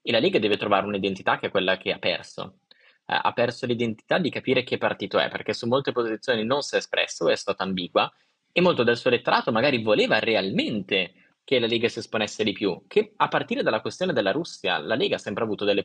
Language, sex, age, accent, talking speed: Italian, male, 20-39, native, 225 wpm